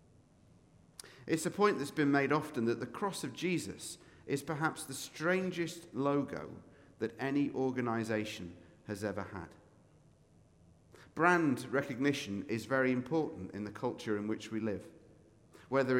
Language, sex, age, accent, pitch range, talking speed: English, male, 40-59, British, 110-150 Hz, 135 wpm